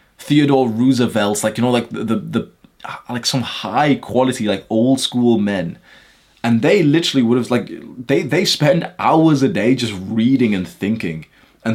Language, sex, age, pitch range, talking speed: English, male, 20-39, 105-140 Hz, 175 wpm